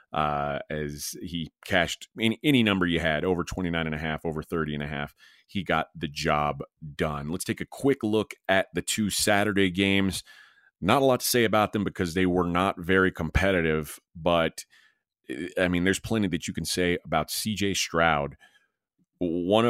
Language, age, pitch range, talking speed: English, 30-49, 85-100 Hz, 185 wpm